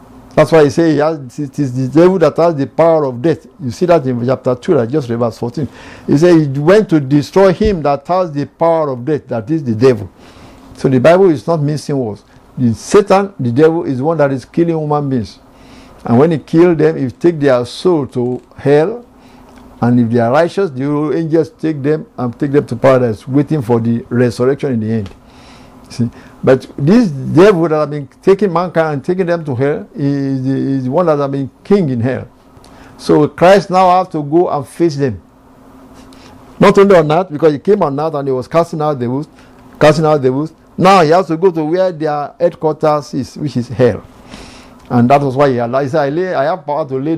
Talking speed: 220 wpm